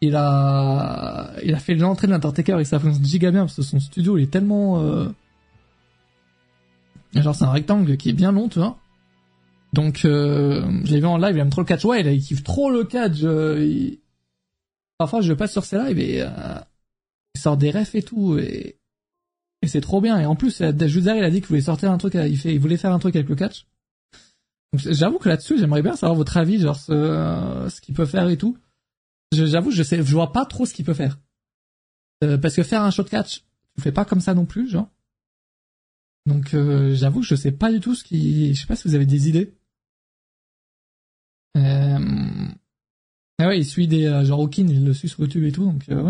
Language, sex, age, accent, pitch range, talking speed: French, male, 20-39, French, 140-185 Hz, 225 wpm